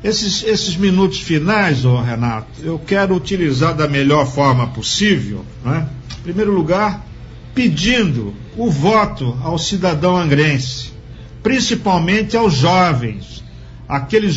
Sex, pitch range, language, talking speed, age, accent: male, 140-210 Hz, Portuguese, 110 wpm, 60-79, Brazilian